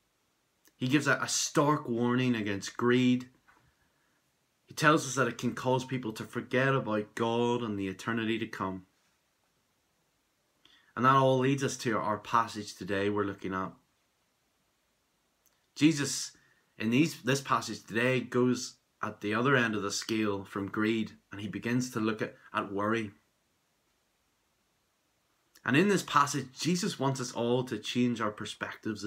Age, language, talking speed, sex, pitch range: 20-39, English, 145 wpm, male, 105-130 Hz